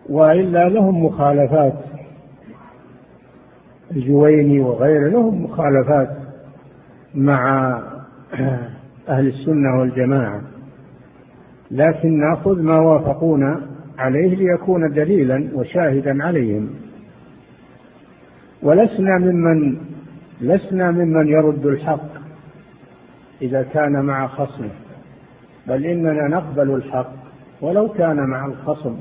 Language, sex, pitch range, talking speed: Arabic, male, 135-170 Hz, 80 wpm